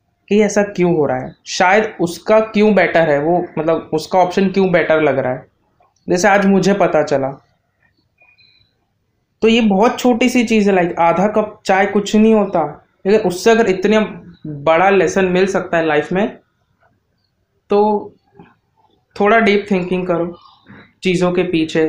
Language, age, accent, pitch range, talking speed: Hindi, 20-39, native, 150-190 Hz, 160 wpm